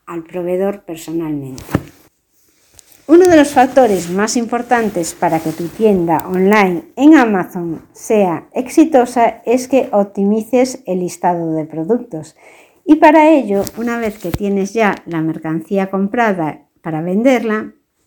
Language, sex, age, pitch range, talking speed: Spanish, female, 60-79, 175-235 Hz, 125 wpm